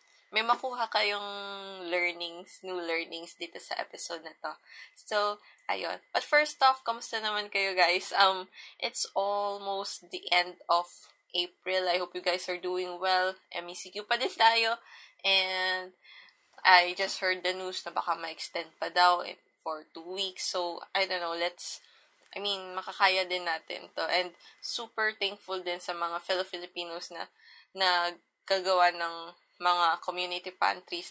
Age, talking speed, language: 20-39, 145 wpm, English